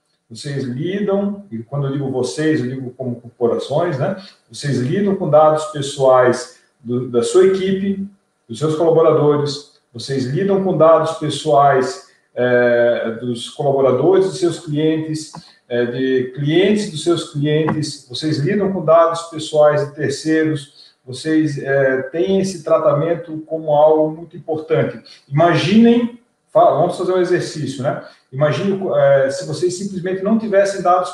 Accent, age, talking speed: Brazilian, 40-59, 130 wpm